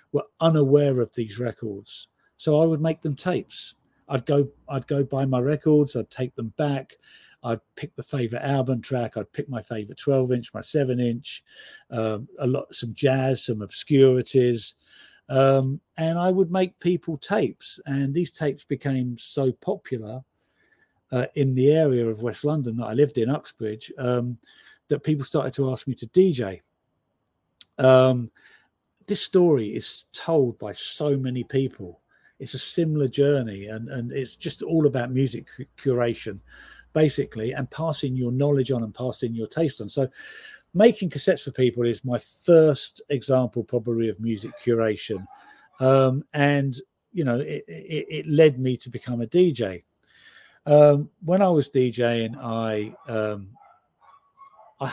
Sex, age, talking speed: male, 50-69, 160 wpm